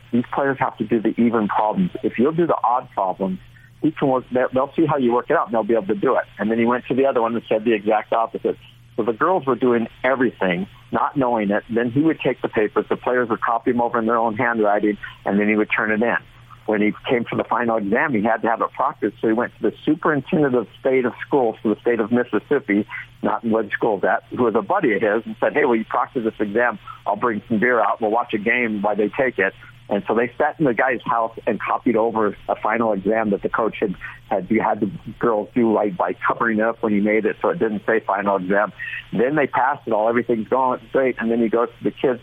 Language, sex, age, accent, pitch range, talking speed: English, male, 50-69, American, 105-120 Hz, 270 wpm